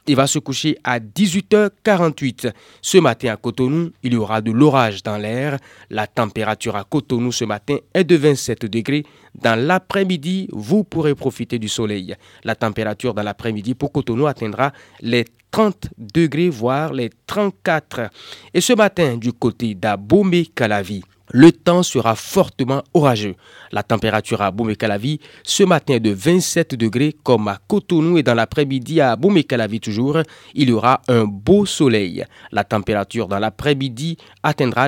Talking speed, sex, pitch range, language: 150 wpm, male, 115-170 Hz, French